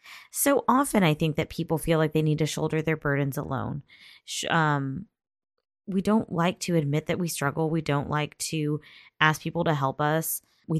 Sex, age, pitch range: female, 20-39, 145-175 Hz